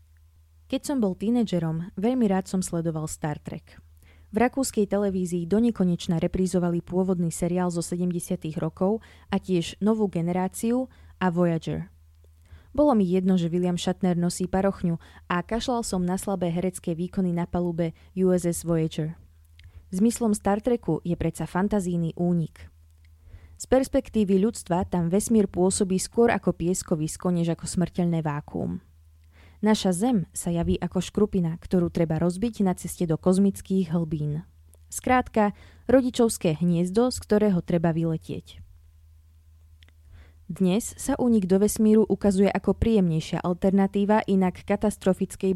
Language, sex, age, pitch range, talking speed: Slovak, female, 20-39, 165-200 Hz, 130 wpm